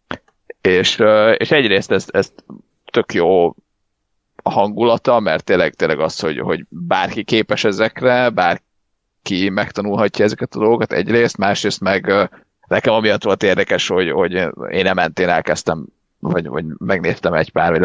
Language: Hungarian